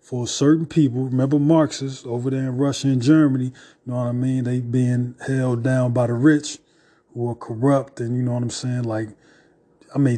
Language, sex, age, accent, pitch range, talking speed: English, male, 20-39, American, 125-150 Hz, 205 wpm